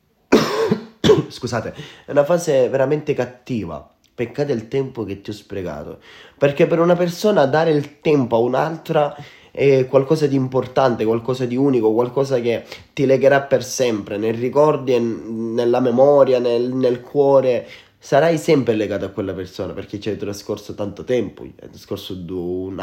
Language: Italian